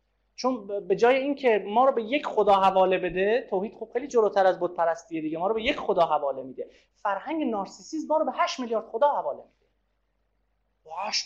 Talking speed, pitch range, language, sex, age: 195 wpm, 205-320 Hz, Persian, male, 40-59